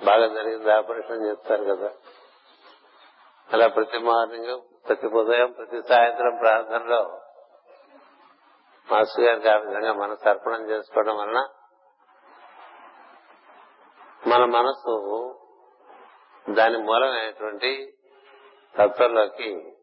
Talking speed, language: 70 wpm, Telugu